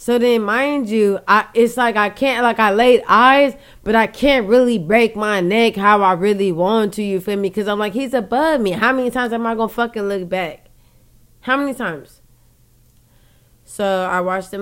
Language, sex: English, female